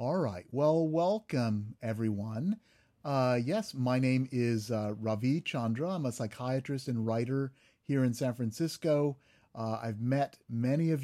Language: English